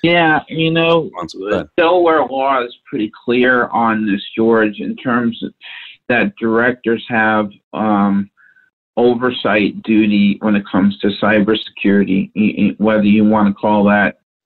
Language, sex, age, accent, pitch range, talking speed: English, male, 50-69, American, 105-120 Hz, 130 wpm